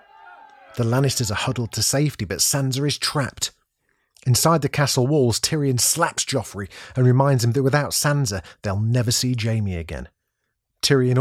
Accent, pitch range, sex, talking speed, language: British, 105-135 Hz, male, 155 wpm, English